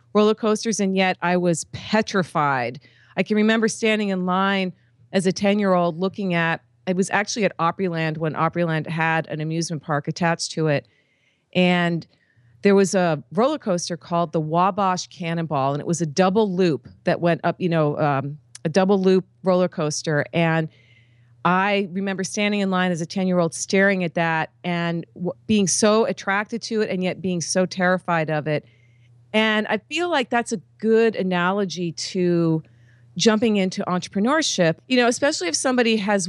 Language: English